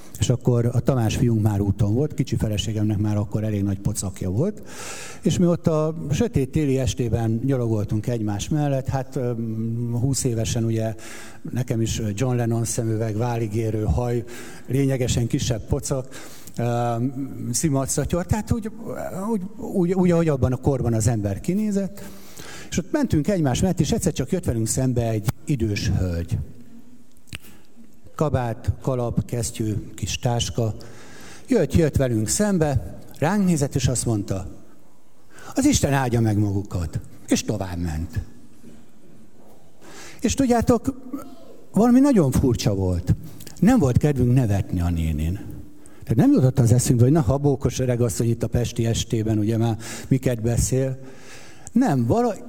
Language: Hungarian